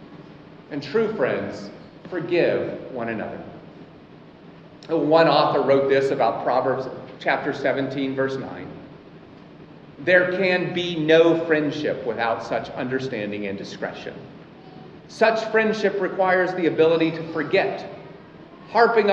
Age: 40-59